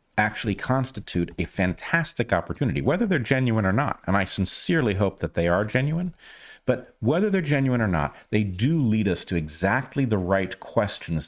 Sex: male